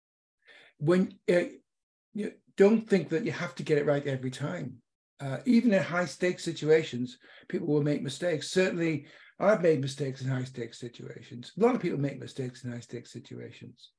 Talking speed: 165 wpm